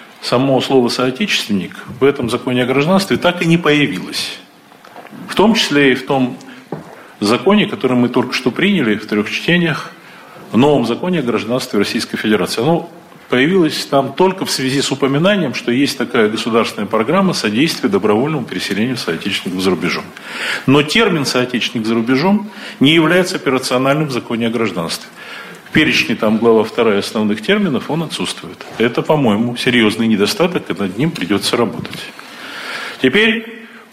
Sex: male